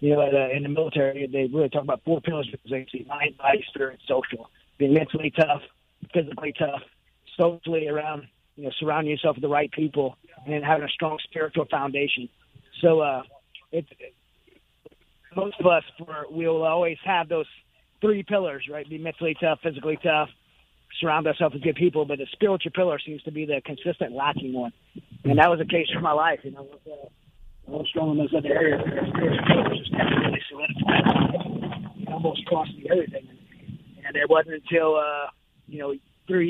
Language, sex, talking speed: English, male, 165 wpm